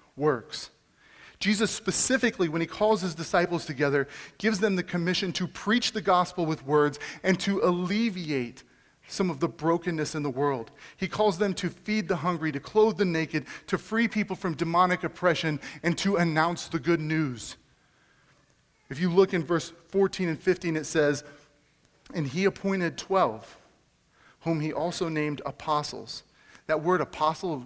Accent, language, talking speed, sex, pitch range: American, English, 160 wpm, male, 140-180 Hz